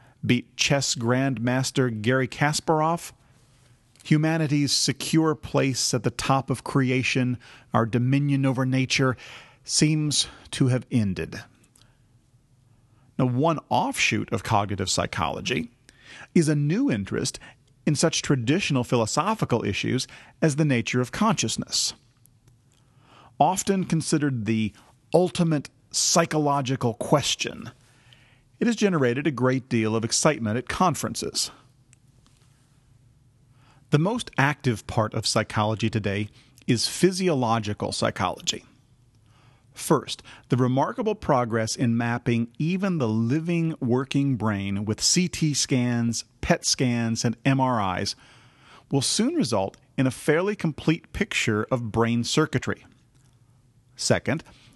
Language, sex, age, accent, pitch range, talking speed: English, male, 40-59, American, 120-145 Hz, 105 wpm